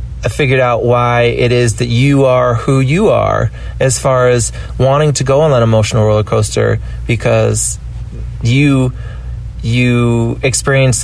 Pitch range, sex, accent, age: 105-115 Hz, male, American, 30-49